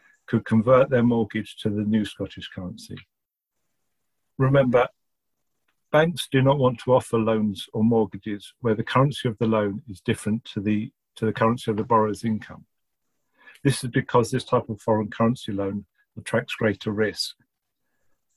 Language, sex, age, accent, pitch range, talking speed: English, male, 50-69, British, 105-125 Hz, 155 wpm